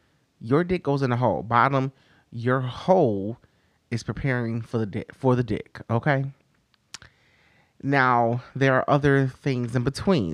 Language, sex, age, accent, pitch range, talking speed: English, male, 30-49, American, 115-140 Hz, 145 wpm